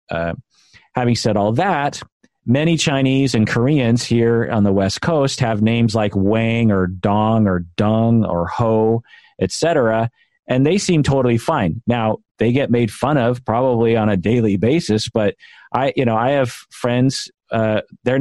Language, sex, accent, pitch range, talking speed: English, male, American, 100-120 Hz, 165 wpm